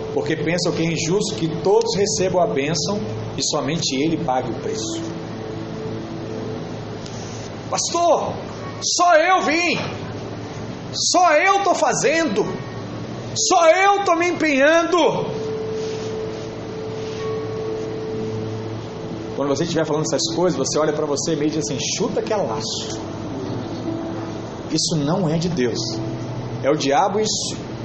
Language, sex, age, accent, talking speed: Portuguese, male, 40-59, Brazilian, 120 wpm